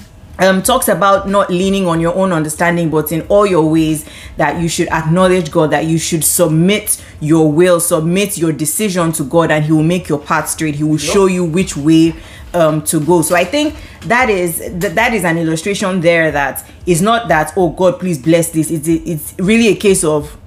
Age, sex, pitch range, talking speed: 20-39, female, 155-185 Hz, 215 wpm